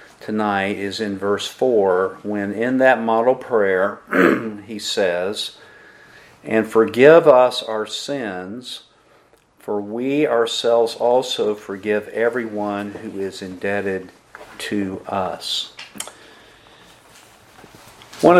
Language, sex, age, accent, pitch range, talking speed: English, male, 50-69, American, 105-115 Hz, 95 wpm